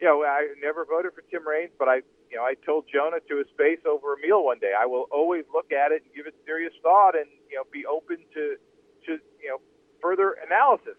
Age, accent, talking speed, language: 40-59, American, 245 wpm, English